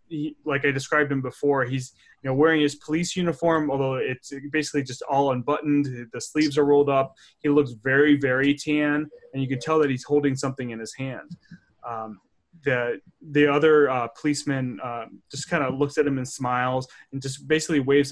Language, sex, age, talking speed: English, male, 20-39, 195 wpm